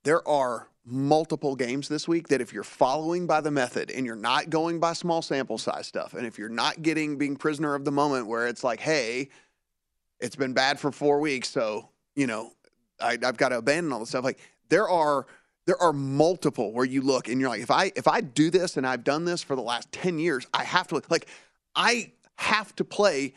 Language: English